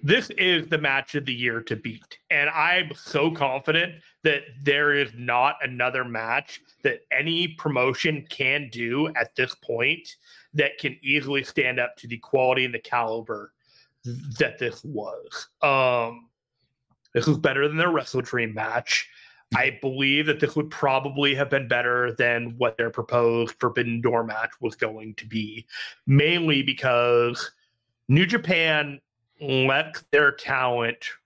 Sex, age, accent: male, 30-49, American